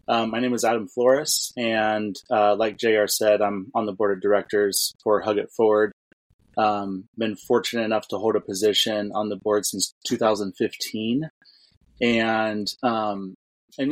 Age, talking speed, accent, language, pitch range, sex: 20-39, 155 wpm, American, English, 105-115 Hz, male